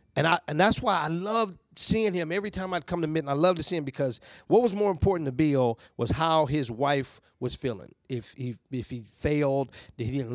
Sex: male